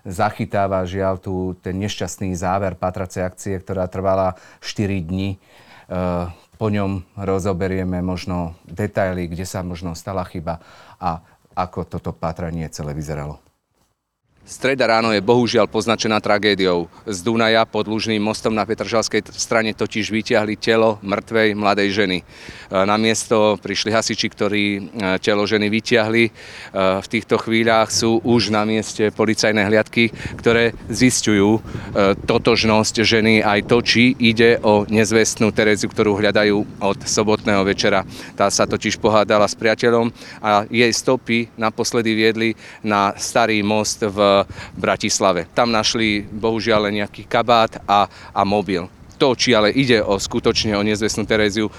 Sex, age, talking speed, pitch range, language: male, 40-59, 135 wpm, 95-115 Hz, Slovak